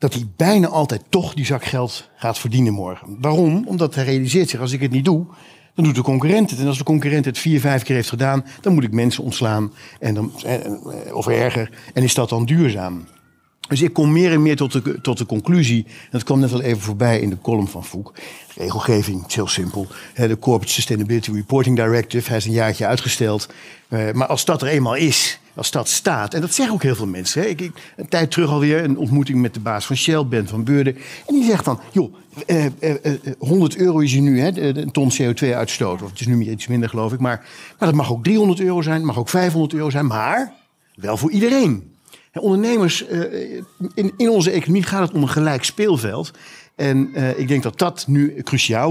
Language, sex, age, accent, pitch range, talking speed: Dutch, male, 50-69, Dutch, 115-160 Hz, 225 wpm